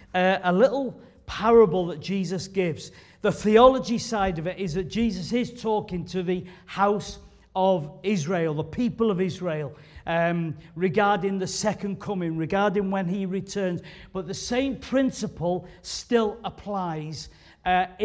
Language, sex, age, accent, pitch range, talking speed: English, male, 40-59, British, 165-215 Hz, 140 wpm